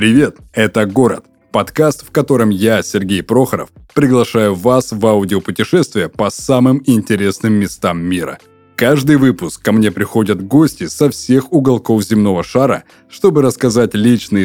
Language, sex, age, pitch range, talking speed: Russian, male, 20-39, 100-130 Hz, 135 wpm